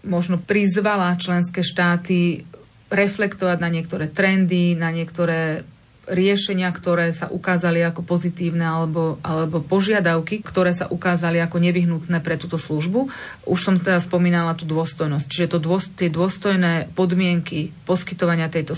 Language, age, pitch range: Slovak, 30-49, 170-185 Hz